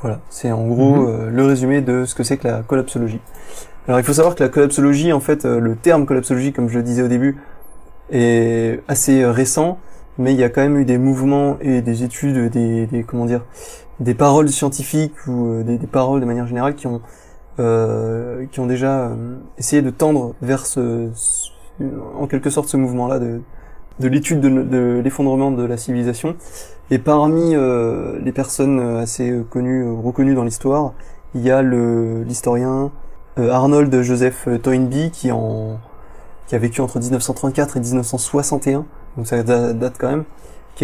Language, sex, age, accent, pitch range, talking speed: French, male, 20-39, French, 120-140 Hz, 185 wpm